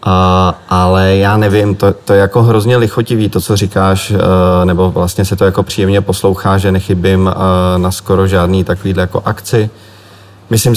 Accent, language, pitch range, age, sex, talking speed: native, Czech, 95-105 Hz, 30-49, male, 155 wpm